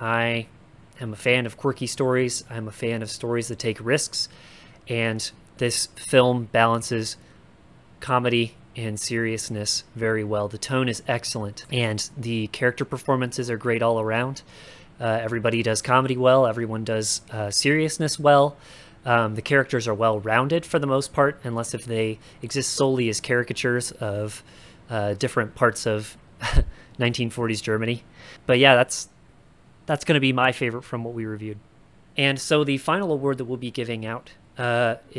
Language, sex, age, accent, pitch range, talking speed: English, male, 30-49, American, 115-135 Hz, 160 wpm